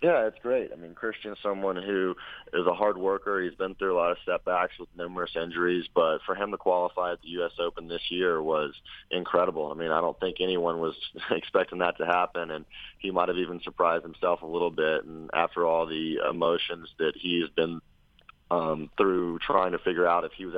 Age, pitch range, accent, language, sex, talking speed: 30-49, 80-95 Hz, American, English, male, 215 wpm